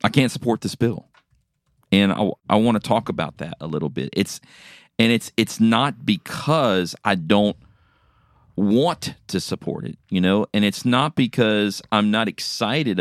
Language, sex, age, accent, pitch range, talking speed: English, male, 40-59, American, 90-115 Hz, 170 wpm